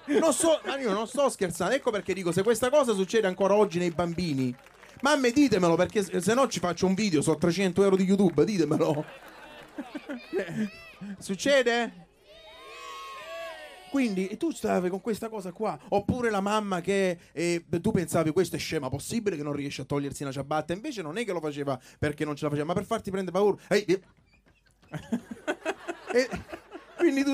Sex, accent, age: male, native, 30-49